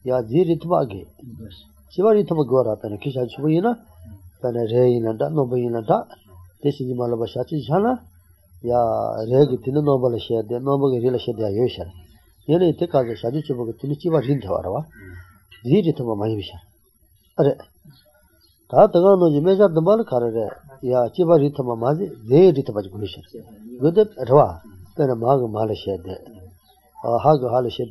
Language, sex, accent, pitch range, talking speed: English, male, Indian, 110-165 Hz, 50 wpm